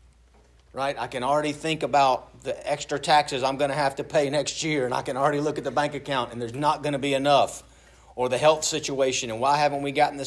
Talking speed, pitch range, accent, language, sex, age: 250 wpm, 90-140 Hz, American, English, male, 40-59